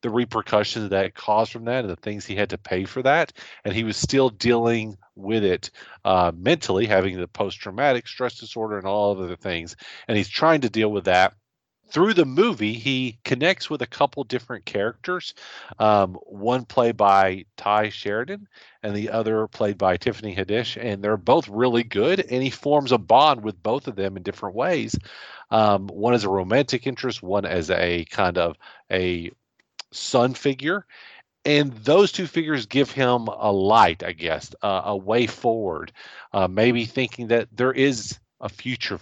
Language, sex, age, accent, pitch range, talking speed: English, male, 40-59, American, 95-125 Hz, 180 wpm